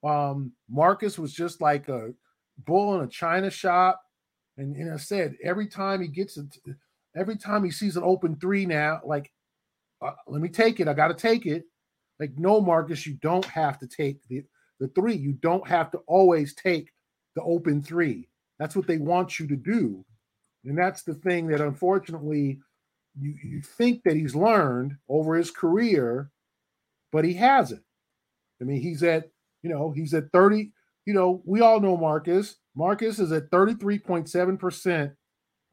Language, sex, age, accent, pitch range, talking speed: English, male, 40-59, American, 150-185 Hz, 170 wpm